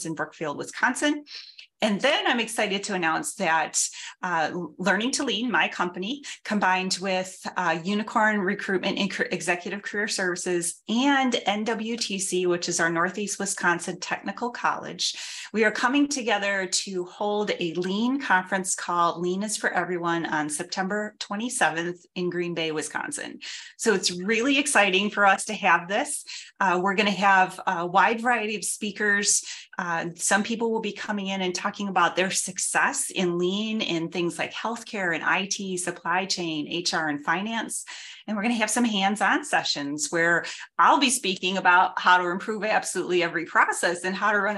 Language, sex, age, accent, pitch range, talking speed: English, female, 30-49, American, 175-215 Hz, 165 wpm